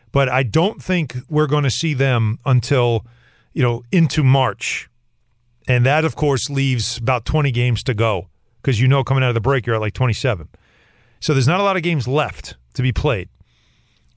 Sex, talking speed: male, 200 wpm